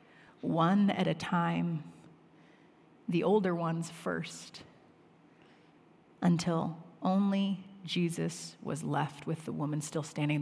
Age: 30-49